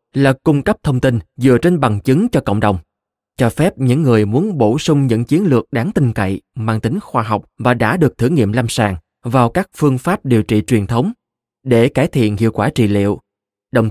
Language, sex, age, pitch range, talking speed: Vietnamese, male, 20-39, 110-135 Hz, 225 wpm